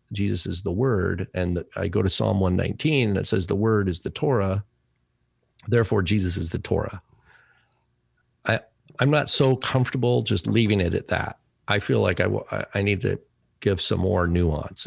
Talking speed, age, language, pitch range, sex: 185 wpm, 40-59, English, 85-110 Hz, male